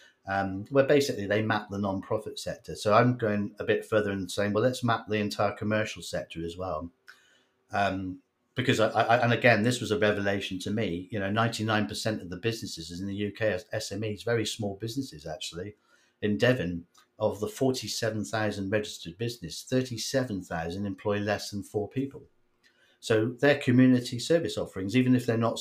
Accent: British